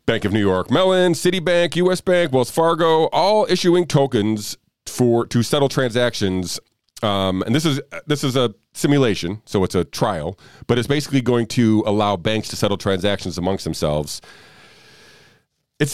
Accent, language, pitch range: American, English, 95-130 Hz